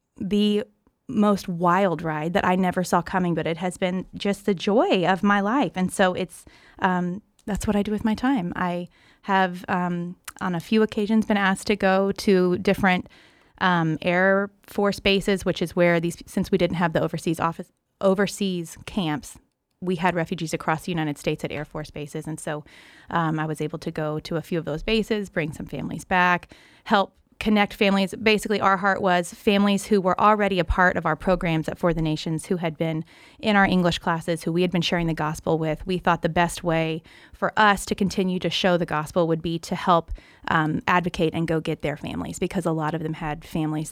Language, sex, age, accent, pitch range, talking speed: English, female, 30-49, American, 160-195 Hz, 210 wpm